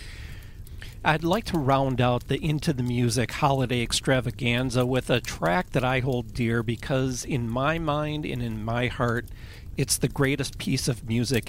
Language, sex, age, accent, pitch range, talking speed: English, male, 40-59, American, 110-145 Hz, 165 wpm